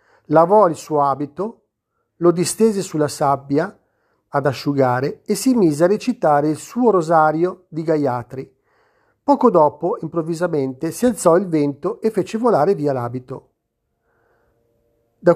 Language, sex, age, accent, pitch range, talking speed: Italian, male, 40-59, native, 140-200 Hz, 130 wpm